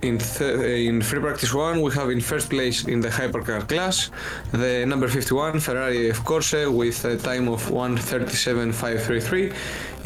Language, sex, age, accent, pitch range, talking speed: Greek, male, 20-39, Spanish, 115-135 Hz, 155 wpm